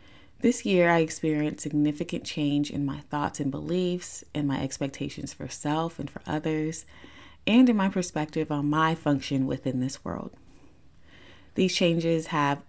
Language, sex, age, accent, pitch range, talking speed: English, female, 20-39, American, 145-170 Hz, 150 wpm